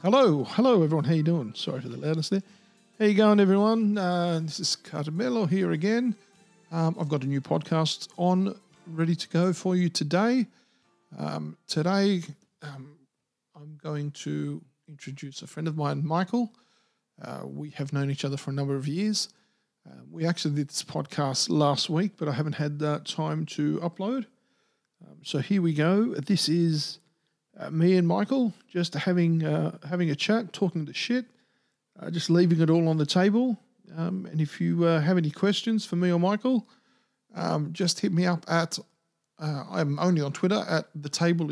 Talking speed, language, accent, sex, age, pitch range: 185 wpm, English, Australian, male, 50-69, 155-200 Hz